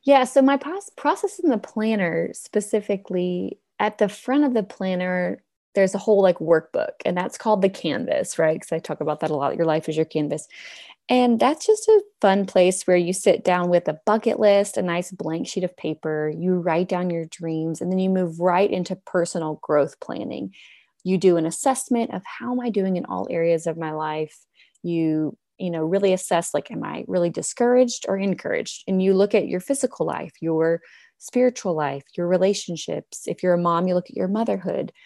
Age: 20-39